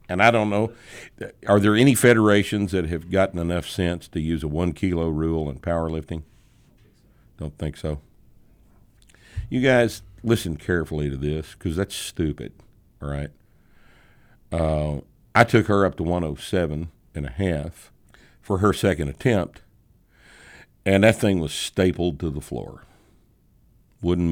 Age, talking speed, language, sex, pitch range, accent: 60-79, 140 wpm, English, male, 80-110 Hz, American